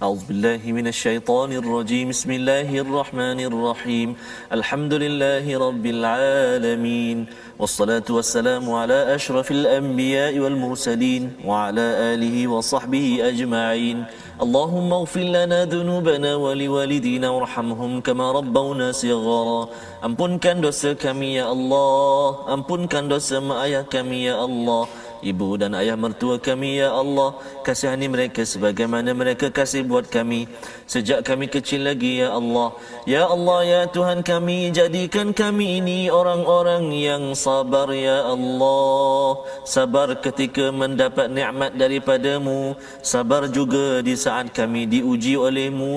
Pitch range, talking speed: 120-145 Hz, 120 wpm